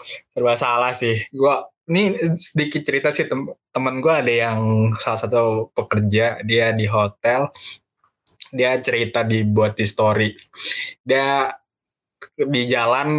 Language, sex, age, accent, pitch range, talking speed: Indonesian, male, 20-39, native, 115-145 Hz, 120 wpm